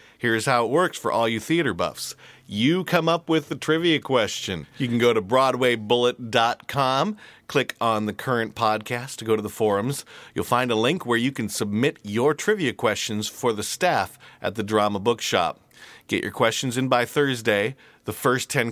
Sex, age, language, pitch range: male, 40-59, English, 110-140 Hz